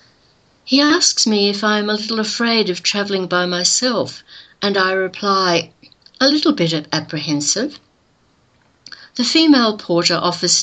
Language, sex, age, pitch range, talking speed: English, female, 60-79, 160-205 Hz, 135 wpm